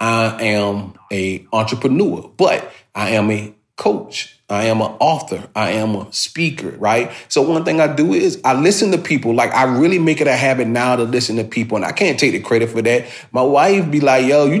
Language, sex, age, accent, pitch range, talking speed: English, male, 30-49, American, 105-140 Hz, 220 wpm